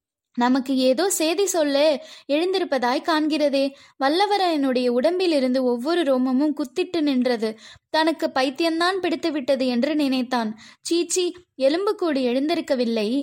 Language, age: Tamil, 20-39